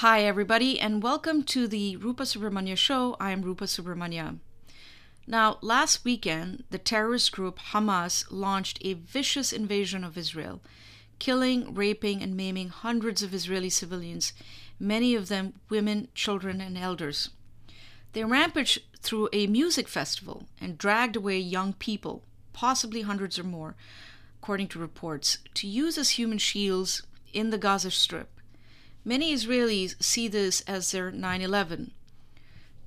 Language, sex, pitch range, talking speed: English, female, 185-230 Hz, 135 wpm